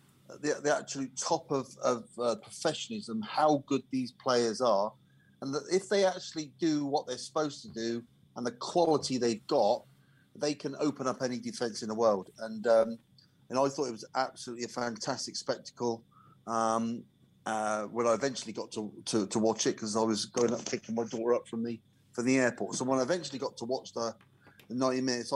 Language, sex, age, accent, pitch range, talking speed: English, male, 30-49, British, 115-140 Hz, 200 wpm